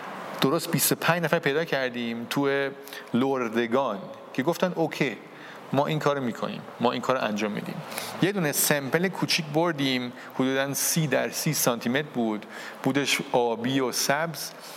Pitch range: 125-160 Hz